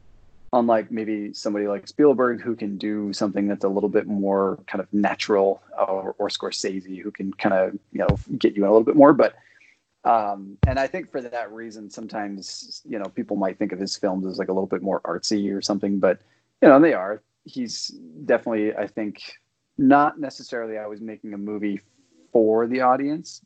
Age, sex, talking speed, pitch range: 30-49, male, 195 wpm, 100-115 Hz